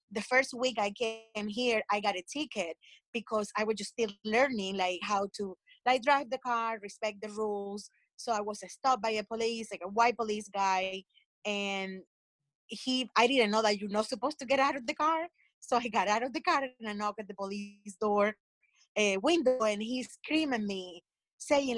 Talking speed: 205 wpm